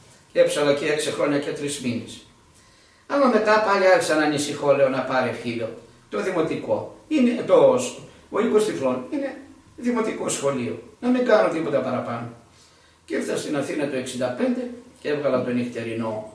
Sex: male